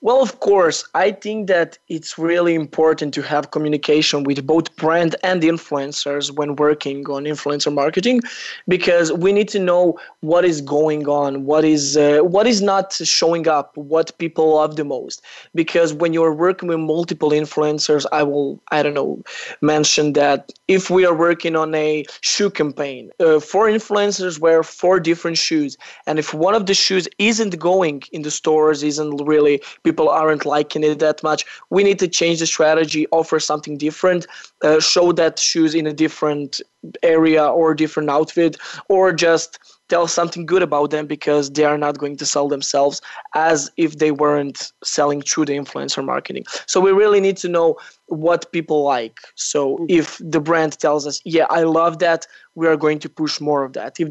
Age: 20-39